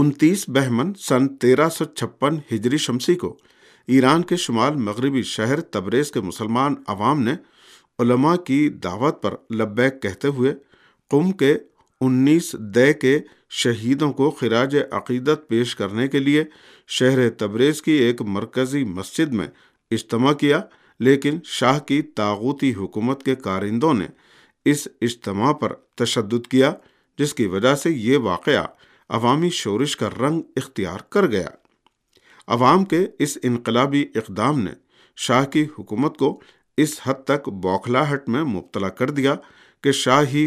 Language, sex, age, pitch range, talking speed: Urdu, male, 50-69, 115-145 Hz, 140 wpm